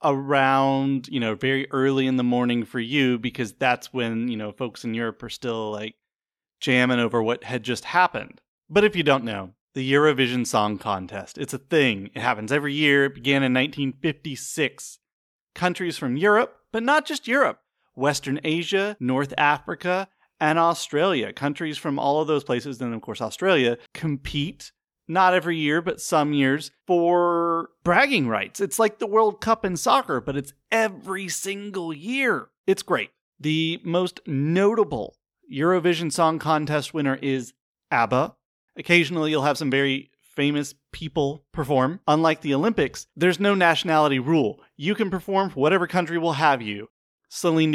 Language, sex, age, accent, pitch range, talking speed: English, male, 30-49, American, 130-175 Hz, 160 wpm